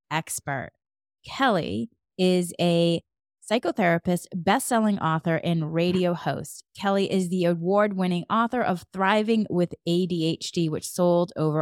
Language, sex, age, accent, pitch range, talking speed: English, female, 30-49, American, 160-210 Hz, 115 wpm